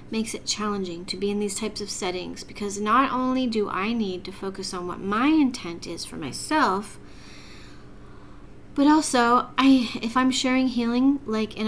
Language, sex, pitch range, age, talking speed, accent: English, female, 200-250 Hz, 30-49, 175 wpm, American